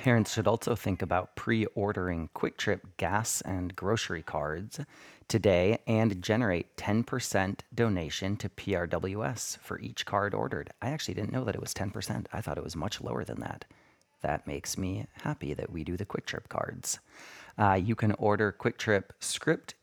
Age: 30-49